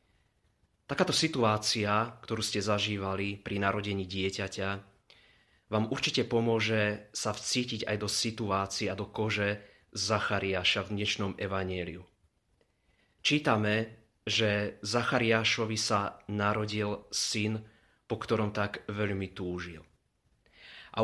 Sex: male